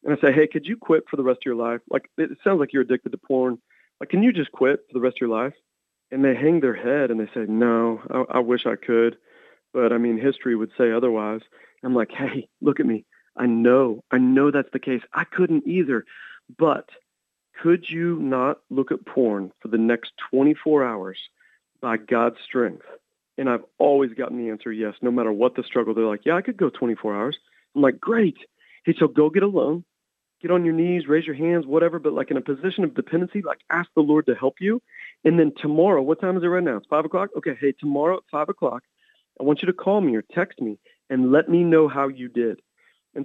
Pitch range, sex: 125-160 Hz, male